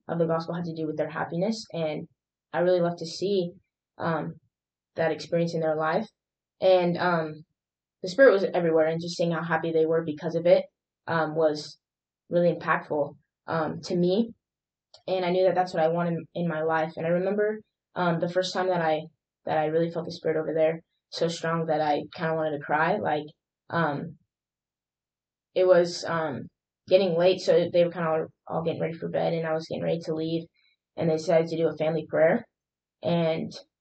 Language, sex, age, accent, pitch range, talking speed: English, female, 10-29, American, 155-175 Hz, 200 wpm